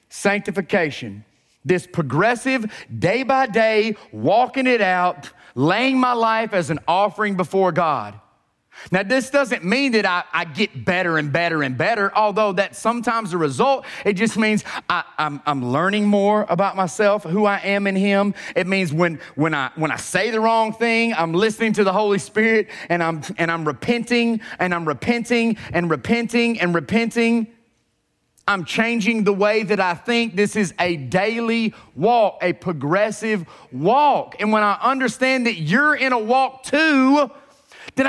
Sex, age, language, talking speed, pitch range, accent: male, 30-49, English, 165 wpm, 170-230 Hz, American